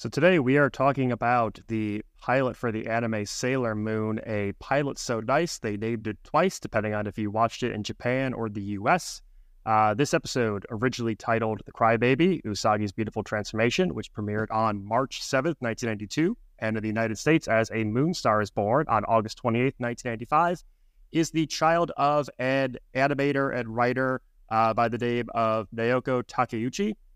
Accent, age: American, 20-39